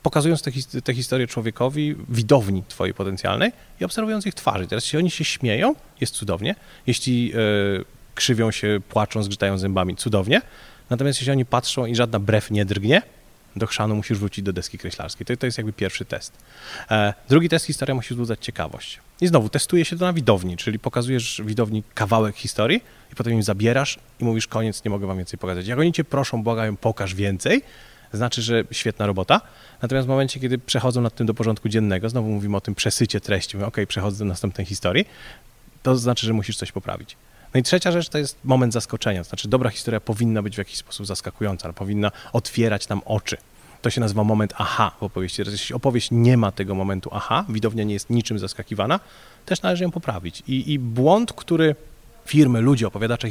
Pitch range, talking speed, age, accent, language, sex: 105-130 Hz, 190 wpm, 30-49, native, Polish, male